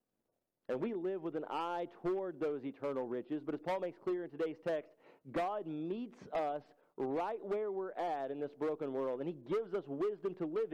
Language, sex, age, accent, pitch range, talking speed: English, male, 40-59, American, 135-175 Hz, 200 wpm